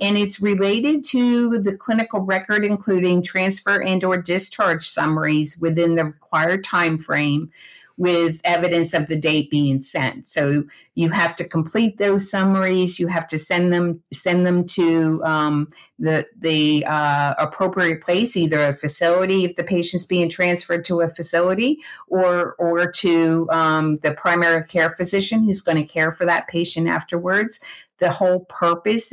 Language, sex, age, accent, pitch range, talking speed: English, female, 50-69, American, 155-180 Hz, 155 wpm